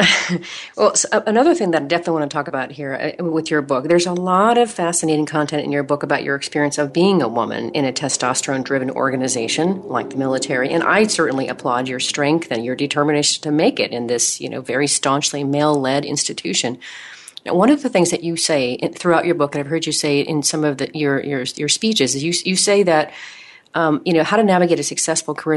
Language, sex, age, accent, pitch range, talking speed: English, female, 40-59, American, 140-165 Hz, 230 wpm